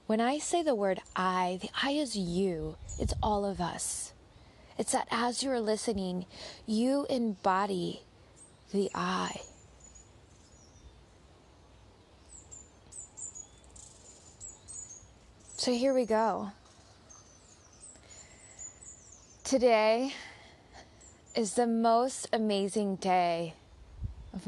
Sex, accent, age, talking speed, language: female, American, 20-39, 85 wpm, English